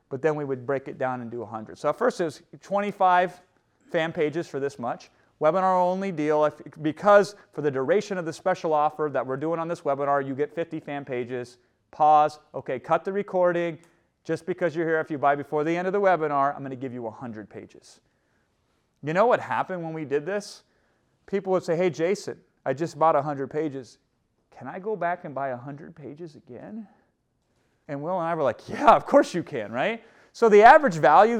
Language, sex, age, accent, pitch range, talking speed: English, male, 30-49, American, 135-185 Hz, 210 wpm